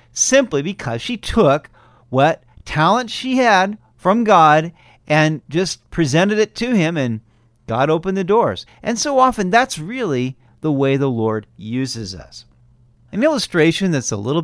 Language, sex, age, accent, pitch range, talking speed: English, male, 50-69, American, 120-180 Hz, 155 wpm